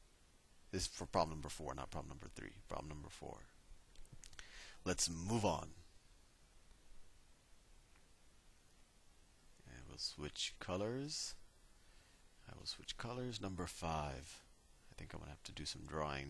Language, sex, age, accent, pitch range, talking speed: English, male, 40-59, American, 80-105 Hz, 135 wpm